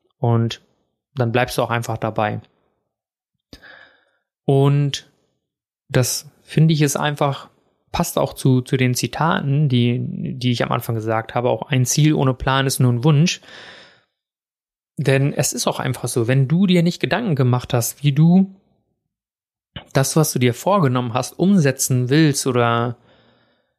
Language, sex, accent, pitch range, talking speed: German, male, German, 125-150 Hz, 150 wpm